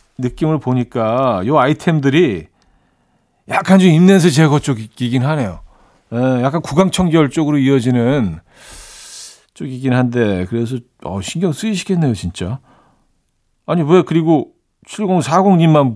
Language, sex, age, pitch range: Korean, male, 40-59, 110-160 Hz